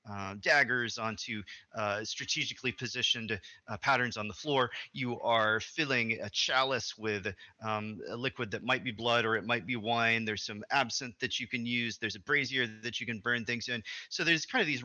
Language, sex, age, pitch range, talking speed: English, male, 30-49, 105-125 Hz, 200 wpm